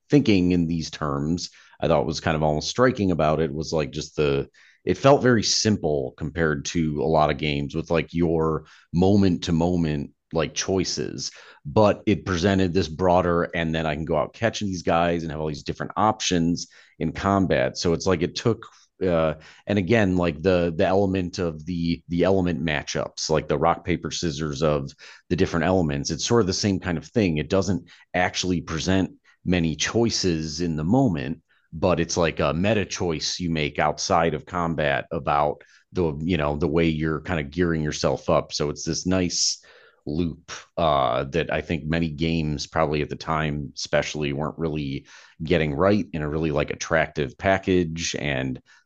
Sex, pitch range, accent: male, 75-90 Hz, American